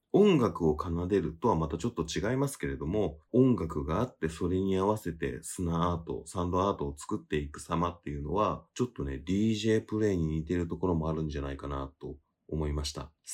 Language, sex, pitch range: Japanese, male, 80-110 Hz